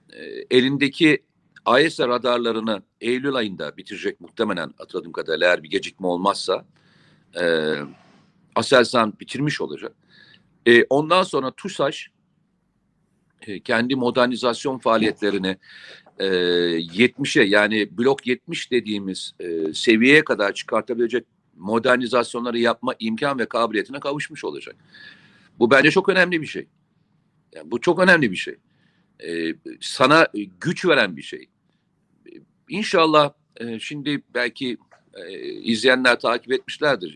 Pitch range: 110-150 Hz